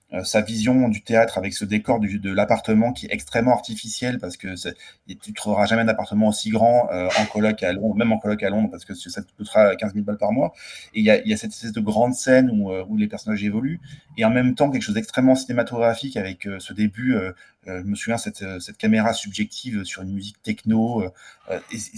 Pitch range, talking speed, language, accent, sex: 105-115 Hz, 230 wpm, French, French, male